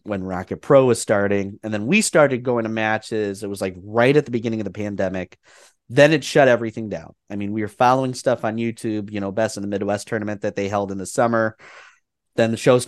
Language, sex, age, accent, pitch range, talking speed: English, male, 30-49, American, 105-130 Hz, 240 wpm